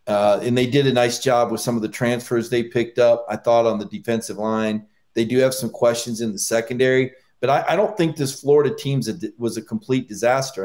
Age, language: 40-59, English